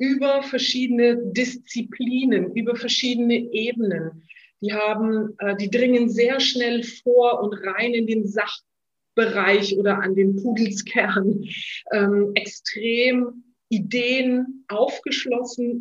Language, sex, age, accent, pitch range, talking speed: German, female, 40-59, German, 205-250 Hz, 100 wpm